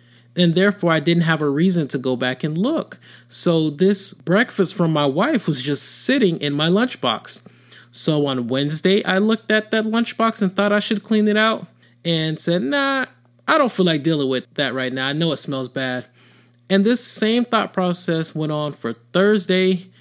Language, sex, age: English, male, 30-49